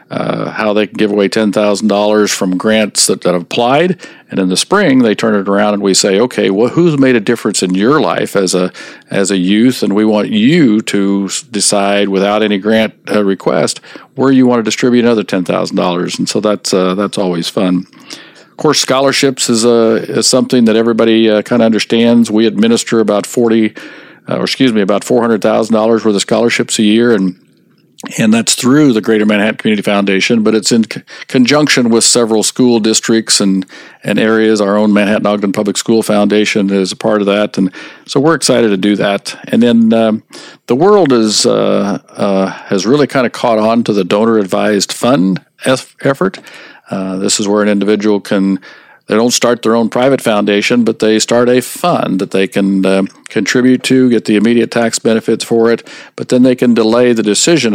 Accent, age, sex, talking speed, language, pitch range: American, 50-69, male, 205 wpm, English, 100-120 Hz